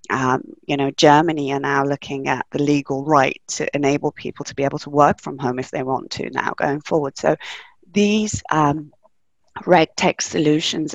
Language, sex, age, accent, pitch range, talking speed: English, female, 30-49, British, 145-185 Hz, 185 wpm